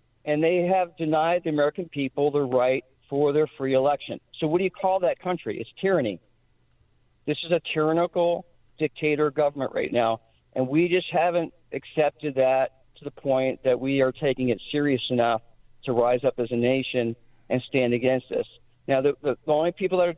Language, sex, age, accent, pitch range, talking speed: English, male, 50-69, American, 130-165 Hz, 190 wpm